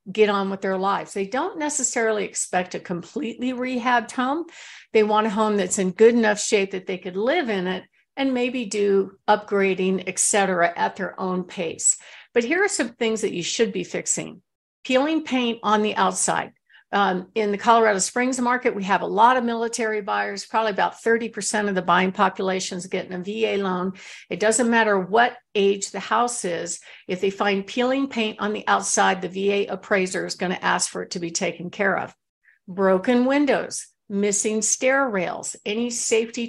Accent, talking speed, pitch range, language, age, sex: American, 190 wpm, 195-240 Hz, English, 50-69, female